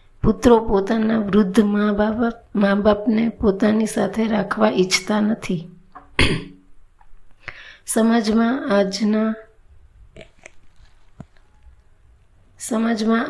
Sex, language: female, Gujarati